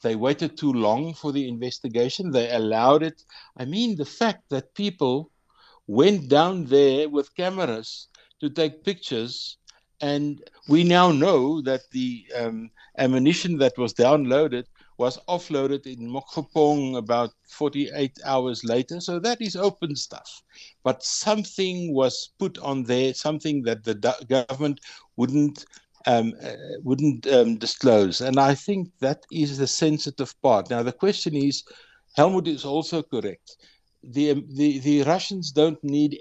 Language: English